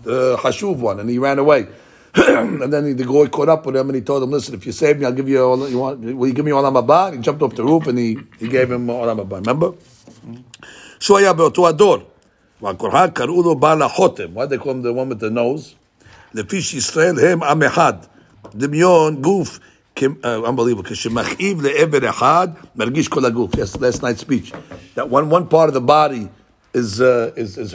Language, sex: English, male